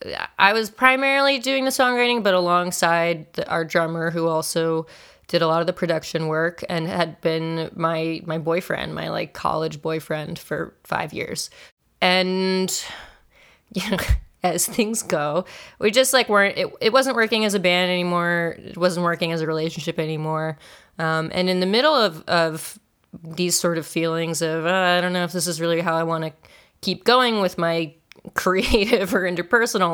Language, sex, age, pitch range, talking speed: English, female, 20-39, 165-190 Hz, 180 wpm